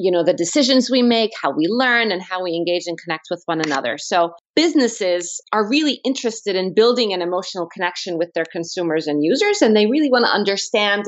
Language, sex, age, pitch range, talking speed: English, female, 30-49, 175-230 Hz, 210 wpm